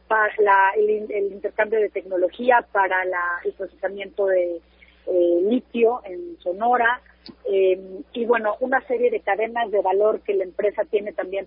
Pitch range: 195-240 Hz